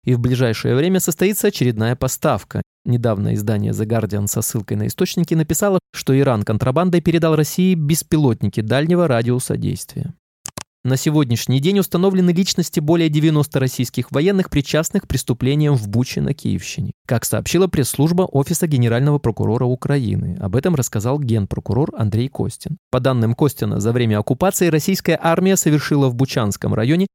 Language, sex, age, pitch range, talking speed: Russian, male, 20-39, 120-165 Hz, 145 wpm